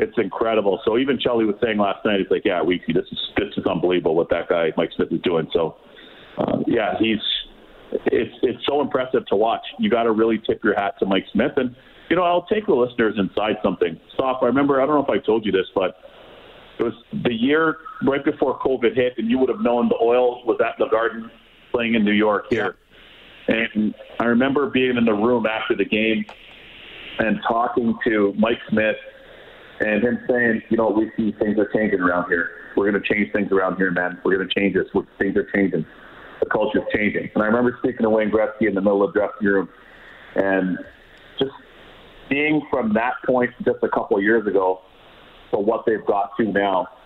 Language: English